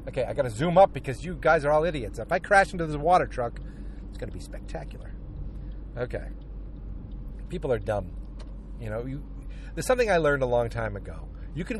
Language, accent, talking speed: English, American, 210 wpm